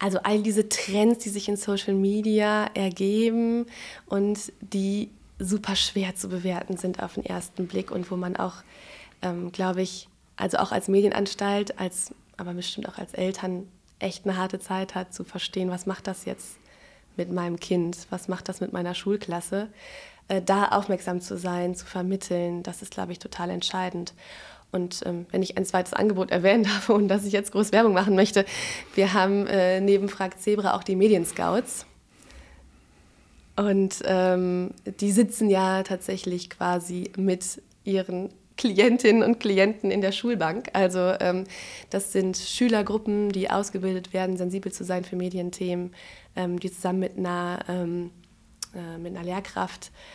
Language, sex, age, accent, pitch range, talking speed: German, female, 20-39, German, 180-200 Hz, 160 wpm